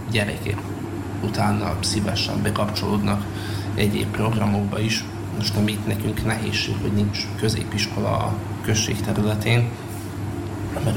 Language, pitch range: Hungarian, 105-110 Hz